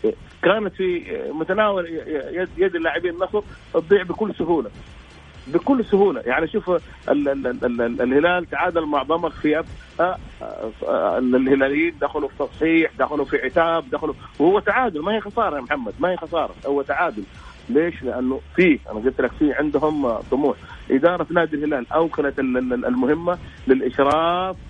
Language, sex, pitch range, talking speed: Arabic, male, 140-175 Hz, 130 wpm